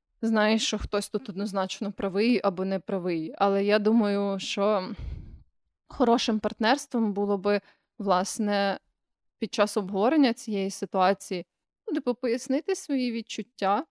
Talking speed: 110 wpm